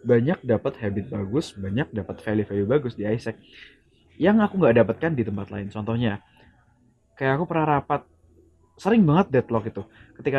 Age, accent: 20-39, native